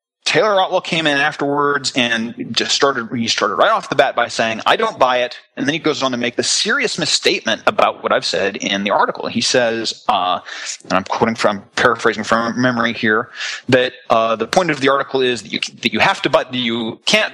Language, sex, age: English, male, 30-49